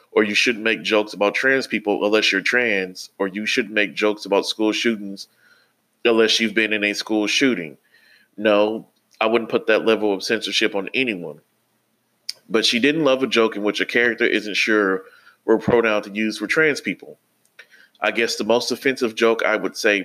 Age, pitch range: 30-49, 105-125 Hz